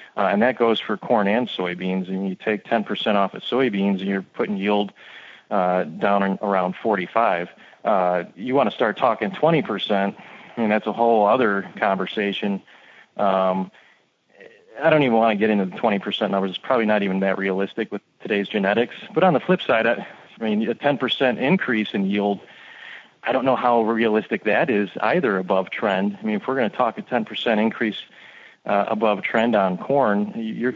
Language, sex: English, male